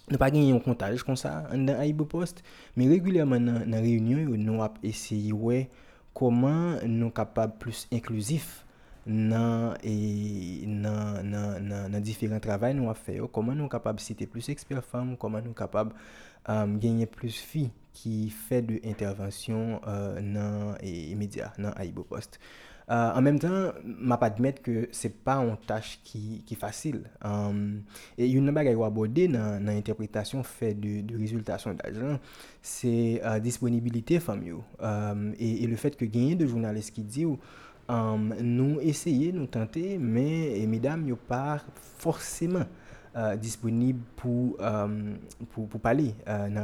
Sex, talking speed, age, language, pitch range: male, 165 wpm, 20-39, French, 110-130 Hz